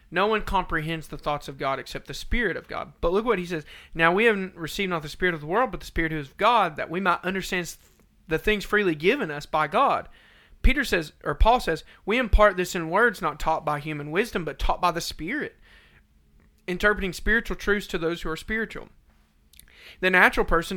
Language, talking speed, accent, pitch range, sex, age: English, 215 wpm, American, 150-195 Hz, male, 40-59